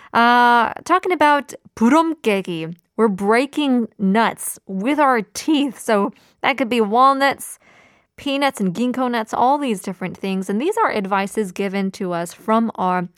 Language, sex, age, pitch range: Korean, female, 20-39, 195-250 Hz